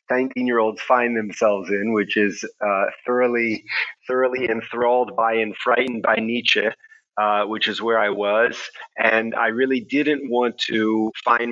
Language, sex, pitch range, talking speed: English, male, 105-125 Hz, 145 wpm